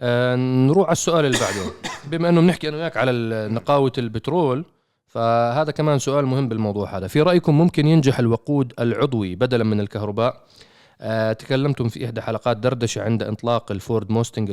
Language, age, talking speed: Arabic, 30-49, 145 wpm